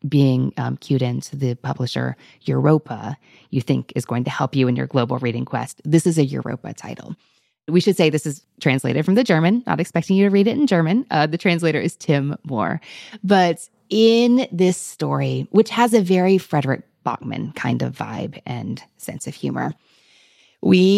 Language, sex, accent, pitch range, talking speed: English, female, American, 135-180 Hz, 190 wpm